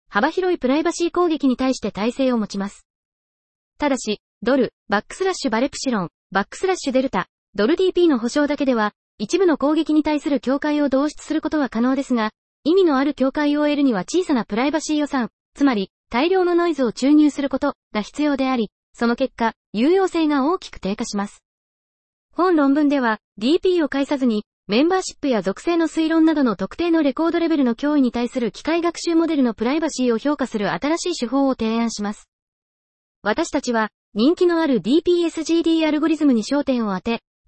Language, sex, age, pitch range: Japanese, female, 20-39, 240-320 Hz